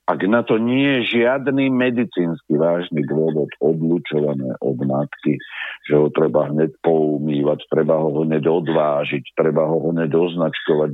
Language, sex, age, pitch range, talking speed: Slovak, male, 50-69, 80-110 Hz, 125 wpm